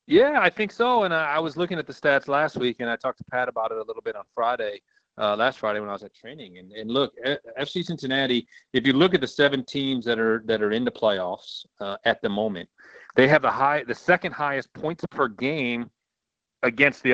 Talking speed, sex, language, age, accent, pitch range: 240 wpm, male, English, 40-59, American, 115-160 Hz